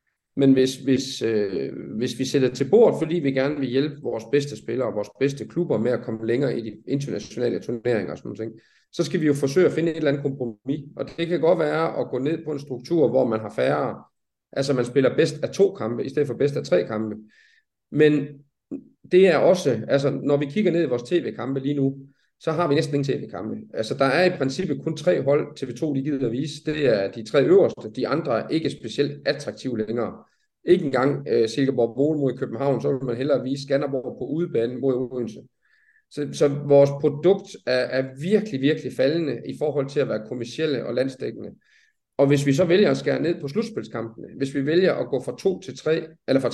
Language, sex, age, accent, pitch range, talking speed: Danish, male, 40-59, native, 125-160 Hz, 225 wpm